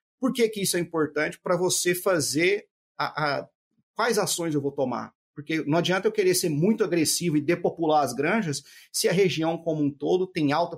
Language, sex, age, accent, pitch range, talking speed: Portuguese, male, 30-49, Brazilian, 140-175 Hz, 190 wpm